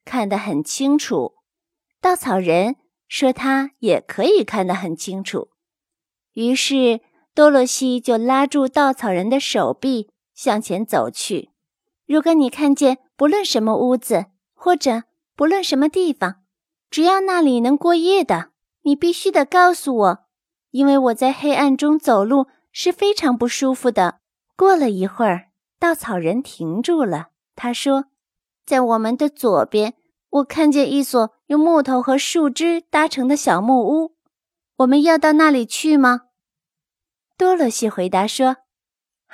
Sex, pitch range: female, 220-305 Hz